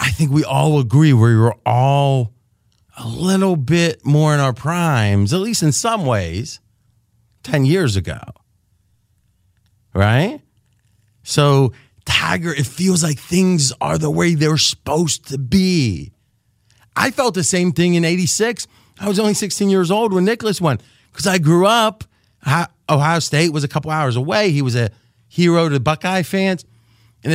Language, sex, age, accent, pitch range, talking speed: English, male, 30-49, American, 110-160 Hz, 160 wpm